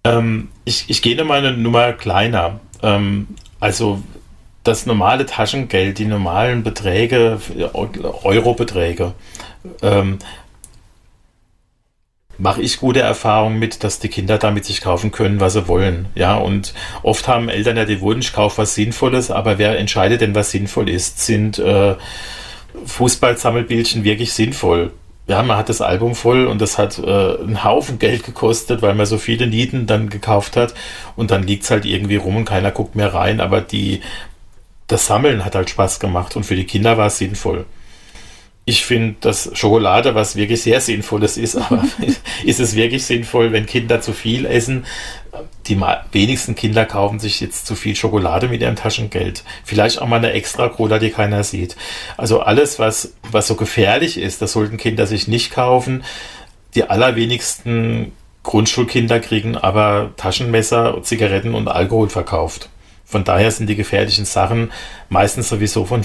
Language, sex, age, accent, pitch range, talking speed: German, male, 40-59, German, 100-115 Hz, 165 wpm